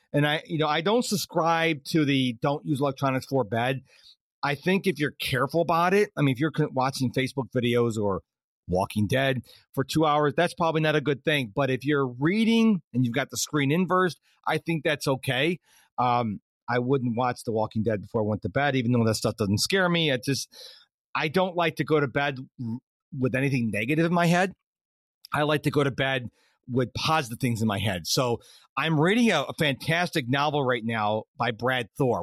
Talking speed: 210 wpm